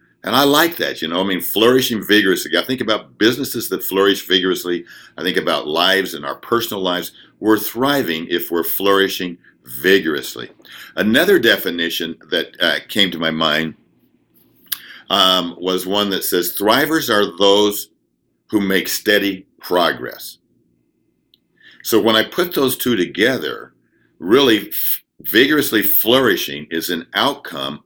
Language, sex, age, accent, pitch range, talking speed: English, male, 50-69, American, 85-105 Hz, 140 wpm